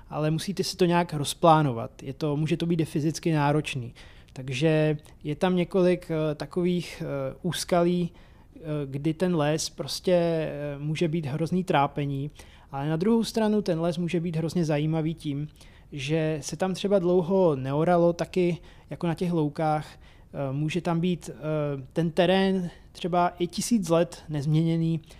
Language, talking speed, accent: Czech, 135 wpm, native